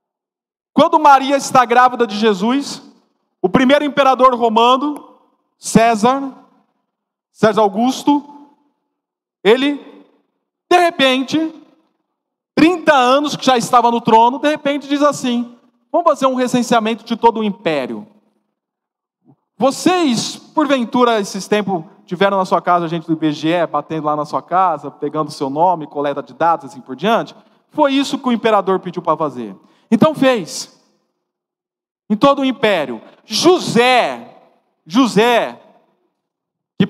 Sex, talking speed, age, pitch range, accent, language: male, 125 wpm, 40-59, 200-265 Hz, Brazilian, Portuguese